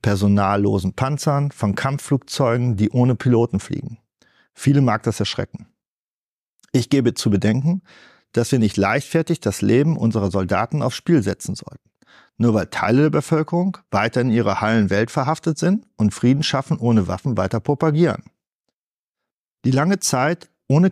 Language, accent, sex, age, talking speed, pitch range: German, German, male, 50-69, 145 wpm, 105-150 Hz